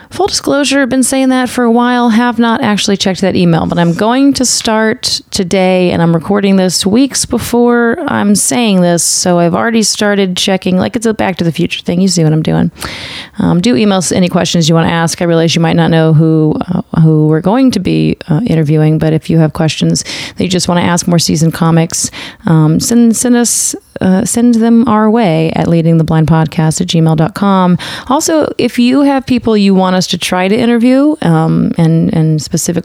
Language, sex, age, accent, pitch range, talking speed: English, female, 30-49, American, 160-210 Hz, 210 wpm